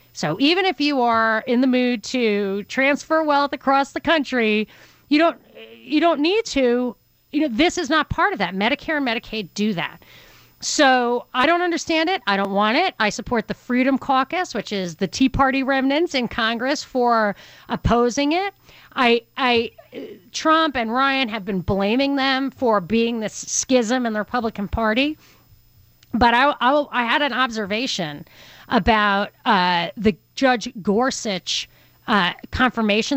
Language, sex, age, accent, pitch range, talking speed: English, female, 40-59, American, 210-280 Hz, 160 wpm